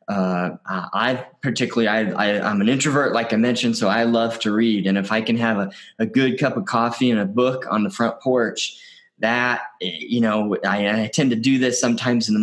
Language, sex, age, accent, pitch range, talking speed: English, male, 20-39, American, 110-135 Hz, 220 wpm